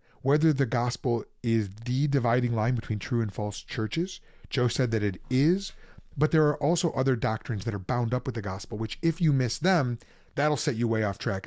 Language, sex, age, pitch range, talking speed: English, male, 30-49, 105-145 Hz, 215 wpm